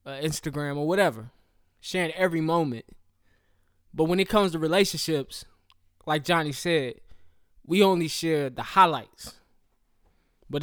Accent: American